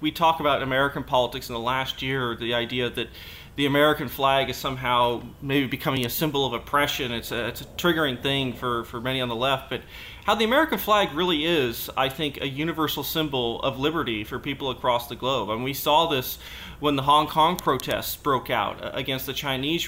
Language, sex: English, male